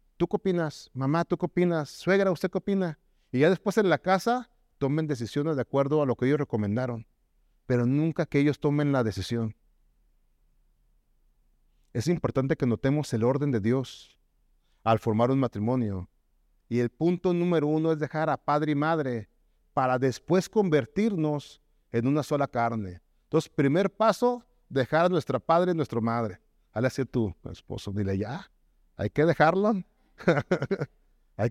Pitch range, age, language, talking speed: 115-180 Hz, 40-59, Spanish, 160 wpm